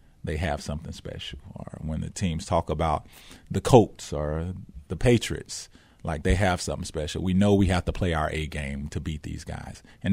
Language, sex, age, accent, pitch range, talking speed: English, male, 30-49, American, 85-105 Hz, 200 wpm